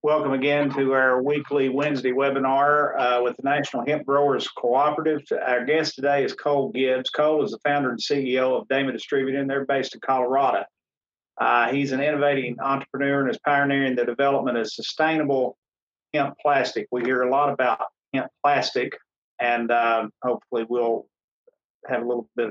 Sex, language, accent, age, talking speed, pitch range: male, English, American, 50-69, 165 wpm, 120-140 Hz